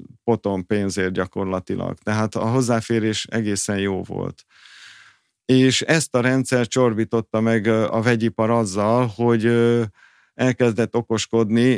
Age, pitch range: 50-69, 105-120 Hz